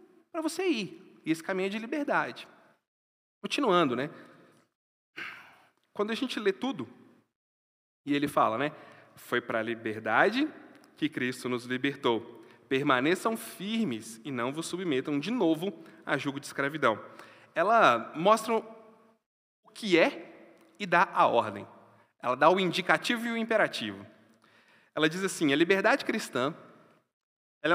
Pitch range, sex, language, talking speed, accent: 115-185 Hz, male, Portuguese, 135 wpm, Brazilian